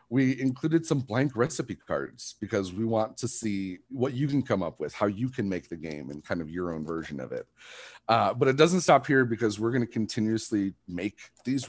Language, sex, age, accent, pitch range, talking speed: English, male, 40-59, American, 95-125 Hz, 225 wpm